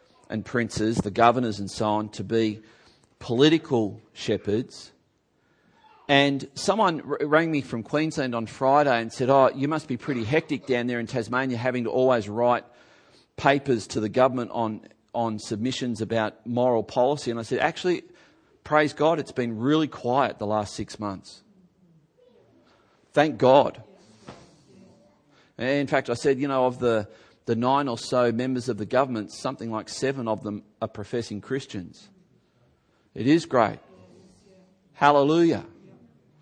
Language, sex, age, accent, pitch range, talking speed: English, male, 40-59, Australian, 115-145 Hz, 145 wpm